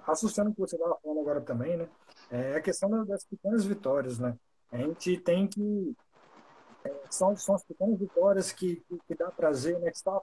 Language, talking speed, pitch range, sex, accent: Portuguese, 200 wpm, 155-205 Hz, male, Brazilian